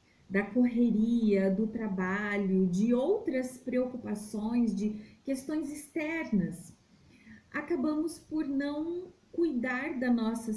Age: 40-59